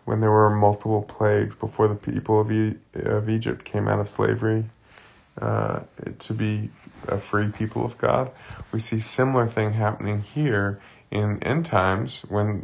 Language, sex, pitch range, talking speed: English, male, 100-125 Hz, 150 wpm